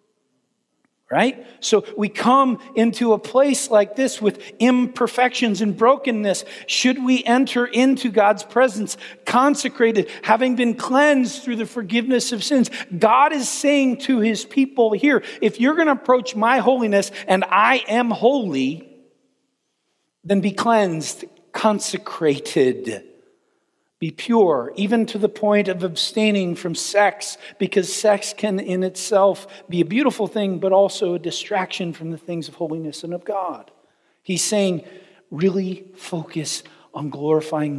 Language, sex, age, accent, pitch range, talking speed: Italian, male, 50-69, American, 180-240 Hz, 140 wpm